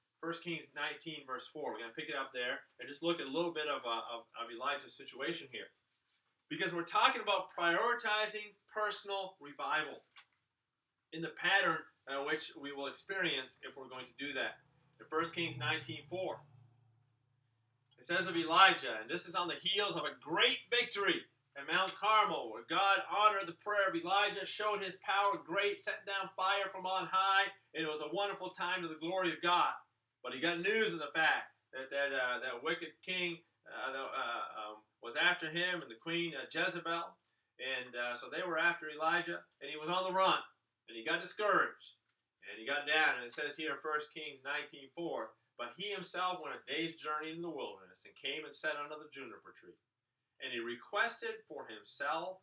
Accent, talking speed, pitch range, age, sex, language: American, 195 wpm, 130-185 Hz, 30-49, male, English